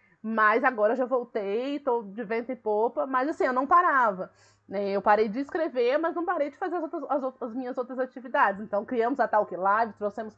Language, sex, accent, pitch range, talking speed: Portuguese, female, Brazilian, 215-260 Hz, 225 wpm